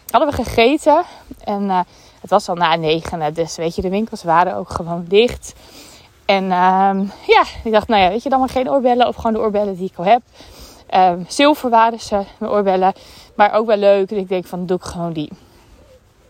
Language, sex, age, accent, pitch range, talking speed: Dutch, female, 20-39, Dutch, 185-260 Hz, 215 wpm